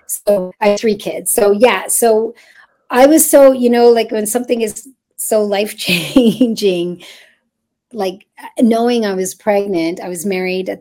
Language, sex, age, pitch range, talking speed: English, female, 40-59, 185-230 Hz, 160 wpm